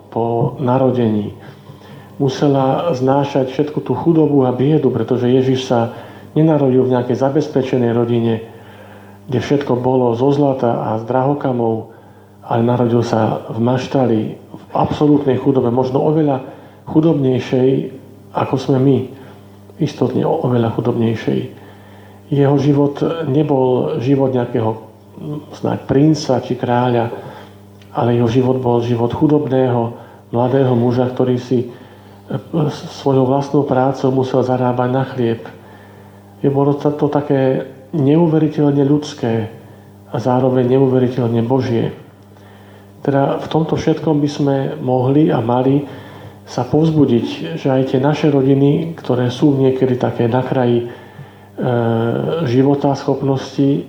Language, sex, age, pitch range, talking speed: Slovak, male, 50-69, 115-140 Hz, 115 wpm